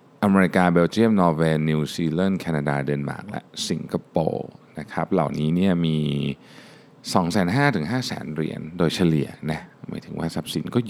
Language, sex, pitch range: Thai, male, 75-95 Hz